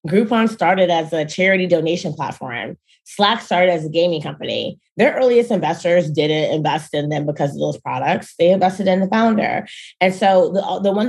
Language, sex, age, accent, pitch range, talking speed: English, female, 20-39, American, 155-195 Hz, 185 wpm